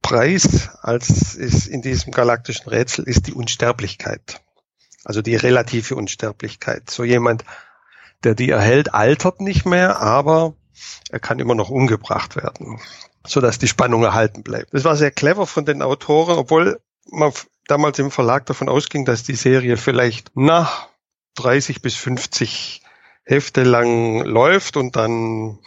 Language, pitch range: German, 115-140 Hz